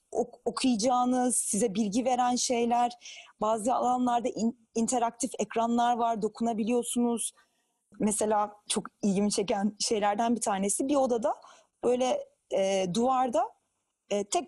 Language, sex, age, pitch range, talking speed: Turkish, female, 30-49, 215-275 Hz, 110 wpm